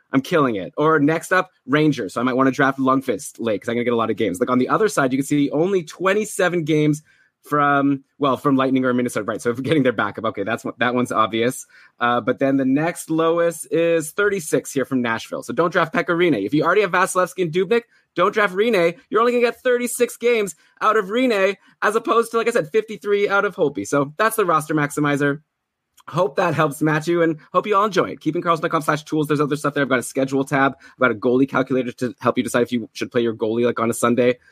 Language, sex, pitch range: English, male, 130-180 Hz